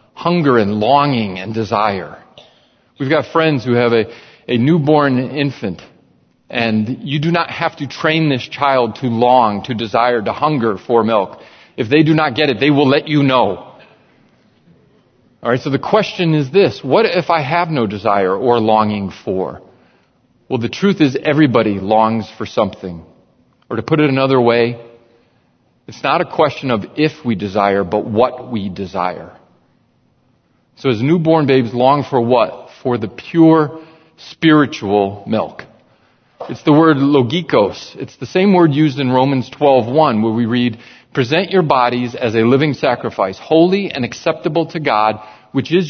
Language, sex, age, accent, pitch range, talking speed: English, male, 40-59, American, 115-155 Hz, 165 wpm